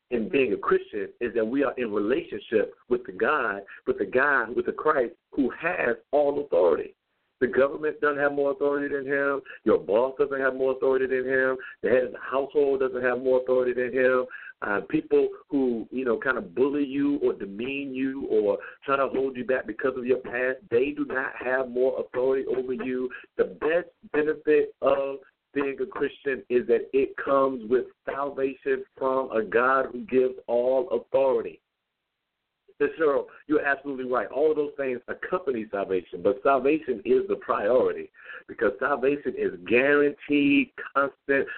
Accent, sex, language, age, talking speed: American, male, English, 50-69, 175 wpm